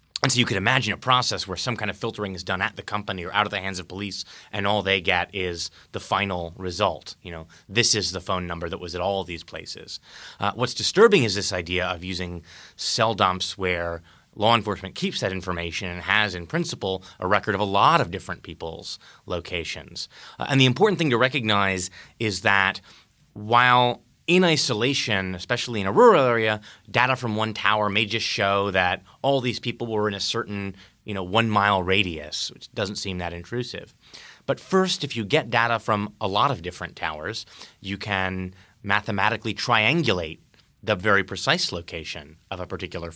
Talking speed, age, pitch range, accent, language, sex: 195 wpm, 20-39, 90-115 Hz, American, English, male